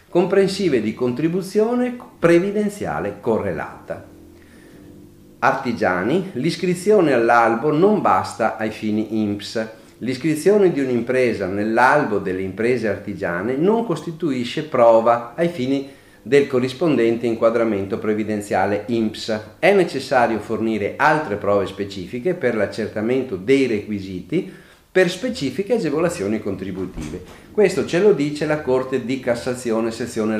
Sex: male